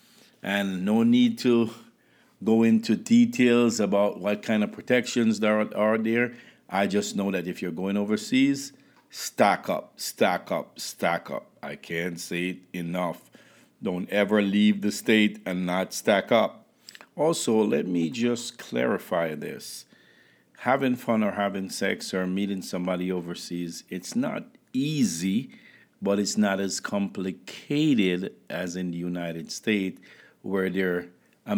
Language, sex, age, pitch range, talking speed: English, male, 50-69, 95-110 Hz, 145 wpm